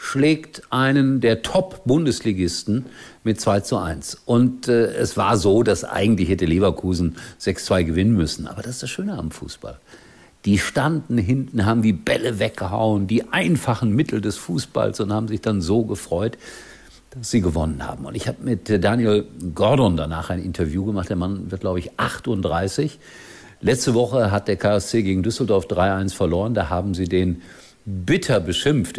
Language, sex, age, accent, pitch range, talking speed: German, male, 50-69, German, 95-125 Hz, 170 wpm